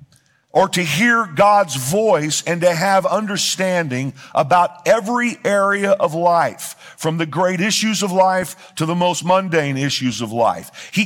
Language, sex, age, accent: English, male, 50-69, American